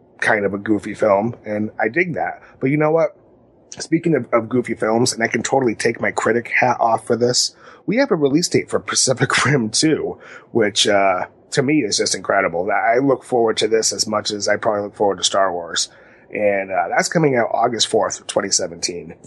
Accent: American